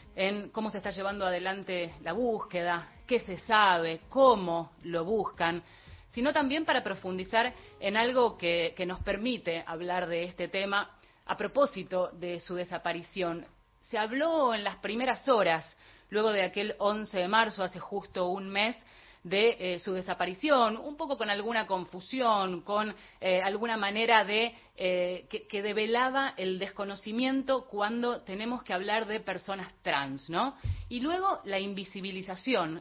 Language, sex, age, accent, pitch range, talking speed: Spanish, female, 30-49, Argentinian, 180-230 Hz, 150 wpm